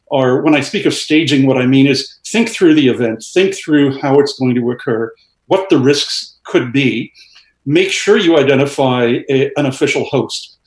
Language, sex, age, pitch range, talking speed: English, male, 50-69, 130-165 Hz, 190 wpm